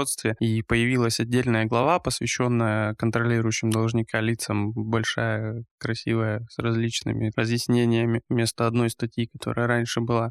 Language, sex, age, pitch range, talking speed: Russian, male, 20-39, 115-130 Hz, 110 wpm